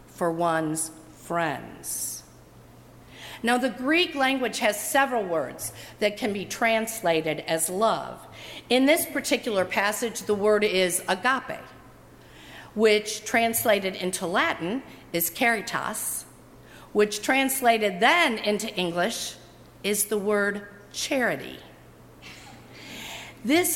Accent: American